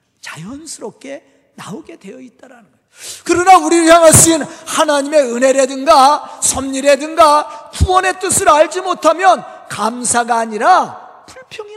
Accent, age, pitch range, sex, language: native, 40-59, 225-315 Hz, male, Korean